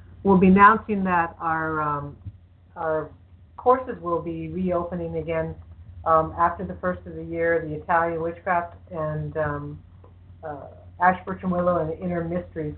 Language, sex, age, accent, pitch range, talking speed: English, female, 50-69, American, 150-180 Hz, 145 wpm